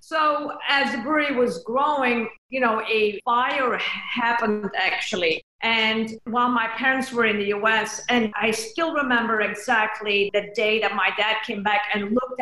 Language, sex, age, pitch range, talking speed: English, female, 50-69, 205-240 Hz, 165 wpm